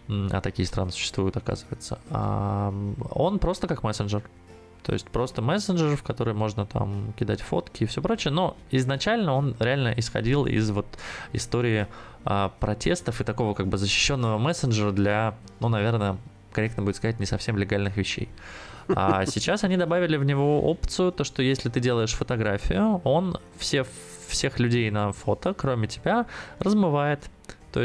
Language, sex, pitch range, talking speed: Russian, male, 100-135 Hz, 150 wpm